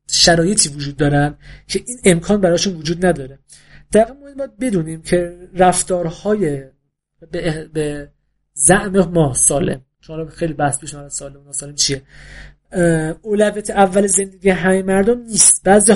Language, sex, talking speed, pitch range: Persian, male, 115 wpm, 155-205 Hz